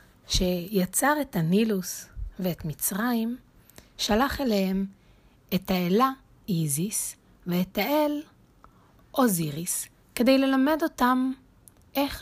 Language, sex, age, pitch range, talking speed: Hebrew, female, 30-49, 170-225 Hz, 85 wpm